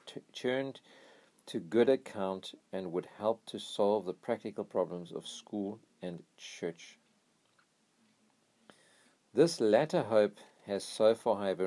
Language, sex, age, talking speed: English, male, 50-69, 120 wpm